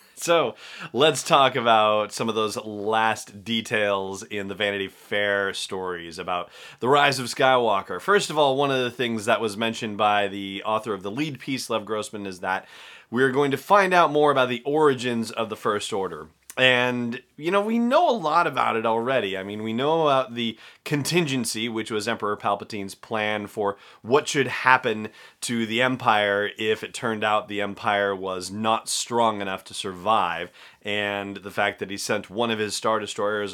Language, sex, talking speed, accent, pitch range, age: English, male, 190 wpm, American, 100-125 Hz, 30-49